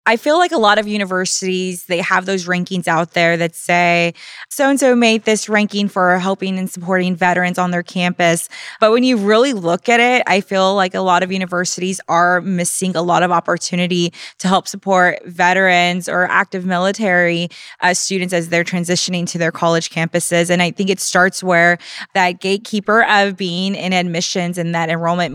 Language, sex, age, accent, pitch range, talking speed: English, female, 20-39, American, 170-195 Hz, 185 wpm